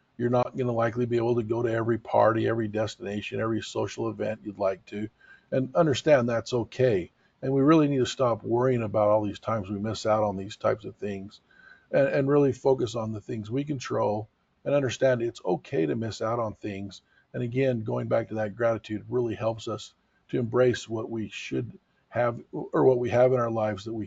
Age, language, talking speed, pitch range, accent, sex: 50-69, English, 215 wpm, 110-125 Hz, American, male